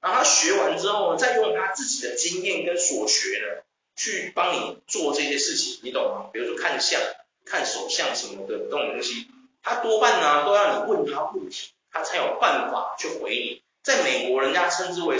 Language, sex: Chinese, male